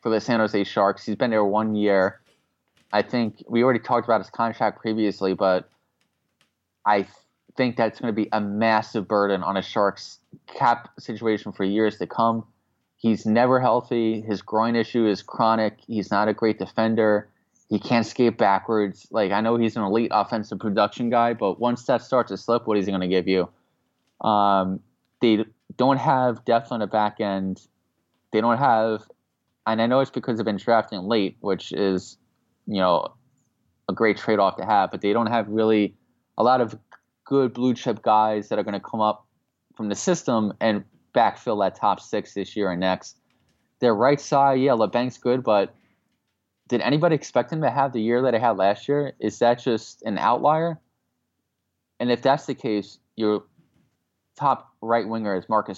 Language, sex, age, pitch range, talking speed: English, male, 20-39, 100-120 Hz, 185 wpm